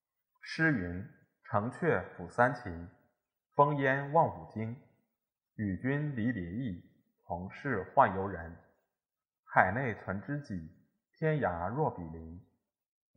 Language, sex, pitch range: Chinese, male, 95-140 Hz